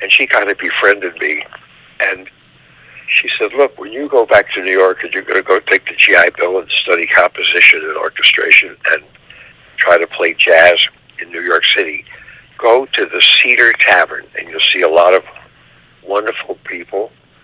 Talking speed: 180 wpm